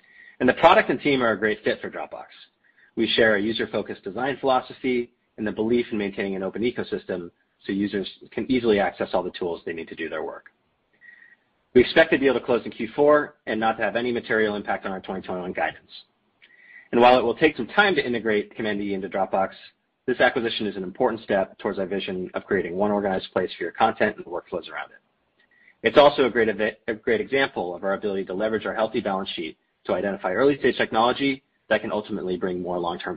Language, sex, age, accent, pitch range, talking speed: English, male, 40-59, American, 100-130 Hz, 215 wpm